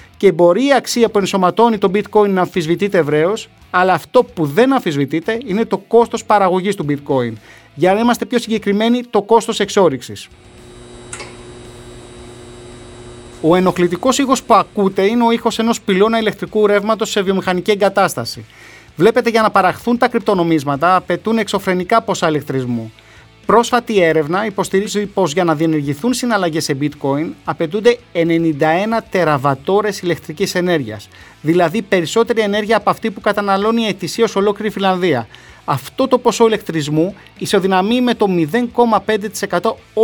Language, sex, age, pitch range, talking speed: Greek, male, 30-49, 160-220 Hz, 135 wpm